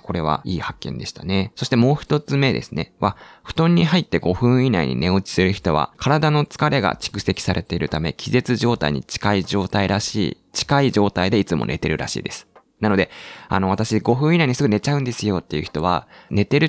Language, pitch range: Japanese, 95-130 Hz